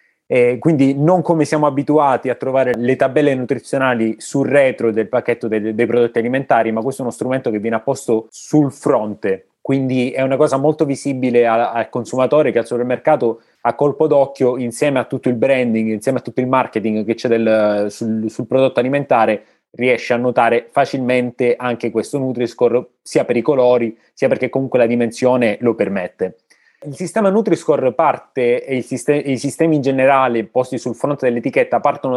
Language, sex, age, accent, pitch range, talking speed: Italian, male, 20-39, native, 120-145 Hz, 170 wpm